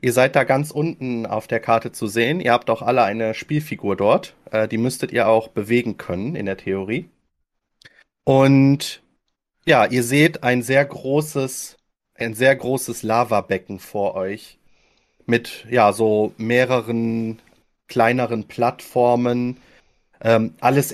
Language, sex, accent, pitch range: German, male, German, 115-135 Hz